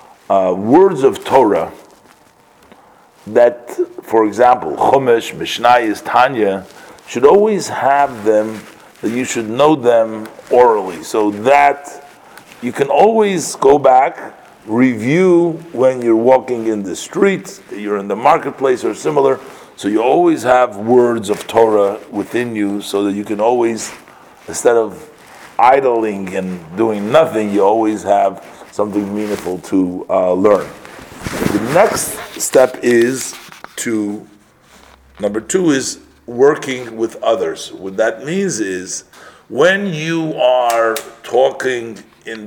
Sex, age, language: male, 50-69, English